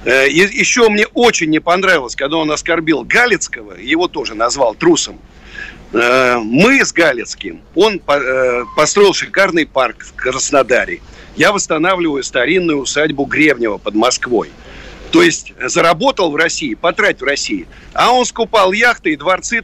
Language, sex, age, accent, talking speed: Russian, male, 50-69, native, 130 wpm